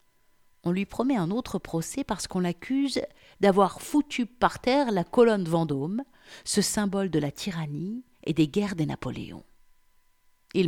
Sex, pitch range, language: female, 155-200 Hz, French